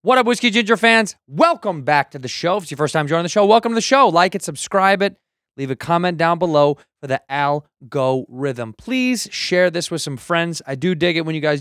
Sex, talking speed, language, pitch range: male, 245 wpm, English, 135-195 Hz